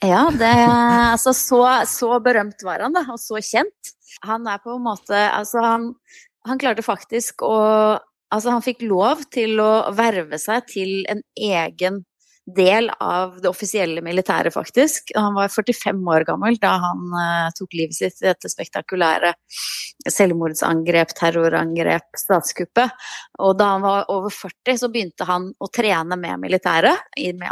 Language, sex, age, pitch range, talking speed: English, female, 30-49, 175-230 Hz, 160 wpm